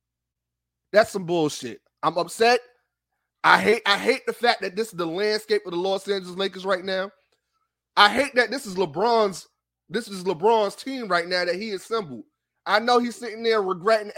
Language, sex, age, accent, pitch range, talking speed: English, male, 30-49, American, 150-220 Hz, 185 wpm